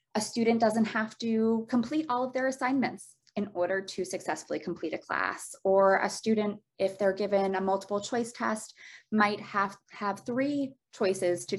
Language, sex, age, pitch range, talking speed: English, female, 20-39, 175-210 Hz, 170 wpm